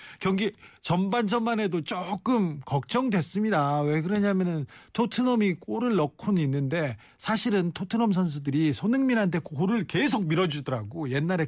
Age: 40-59